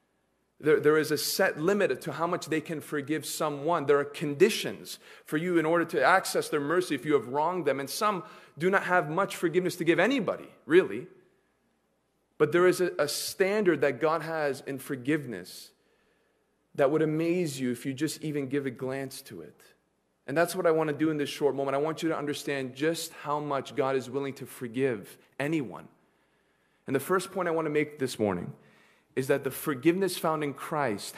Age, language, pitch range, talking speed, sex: 30-49, English, 135-175 Hz, 205 wpm, male